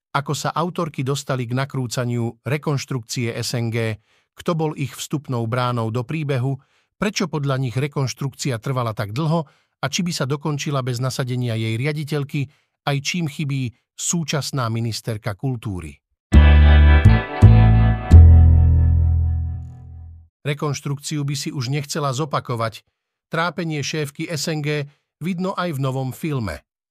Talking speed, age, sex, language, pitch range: 115 wpm, 50-69, male, Slovak, 125-155 Hz